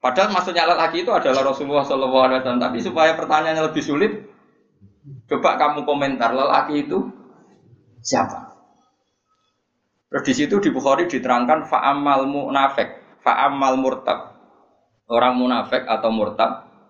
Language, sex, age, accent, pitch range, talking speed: Indonesian, male, 20-39, native, 115-155 Hz, 115 wpm